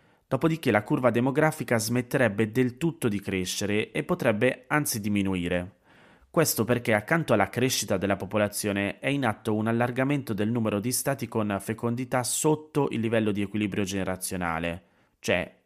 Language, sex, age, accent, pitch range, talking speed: Italian, male, 30-49, native, 100-120 Hz, 145 wpm